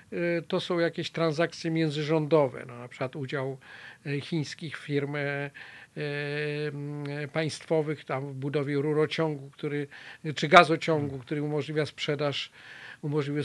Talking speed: 105 wpm